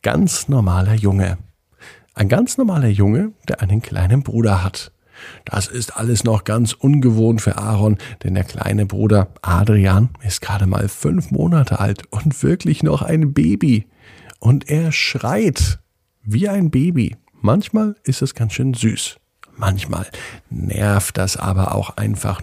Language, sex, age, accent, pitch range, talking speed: German, male, 50-69, German, 95-135 Hz, 145 wpm